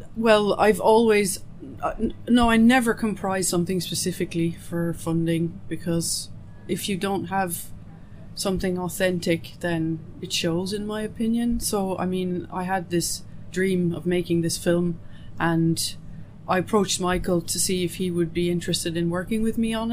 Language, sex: English, female